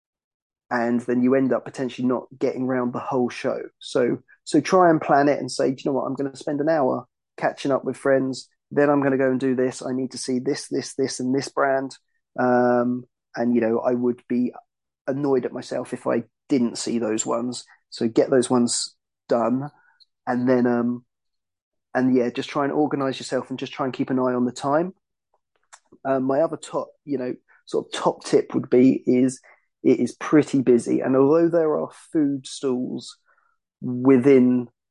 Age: 30-49